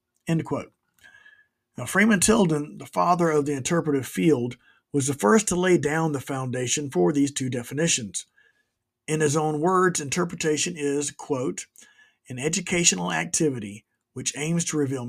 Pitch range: 135-165 Hz